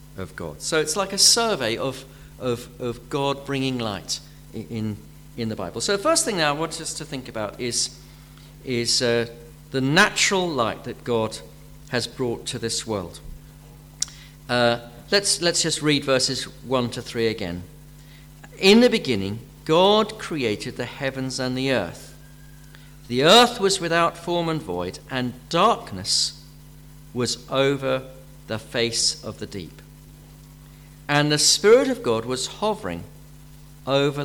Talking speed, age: 150 wpm, 50-69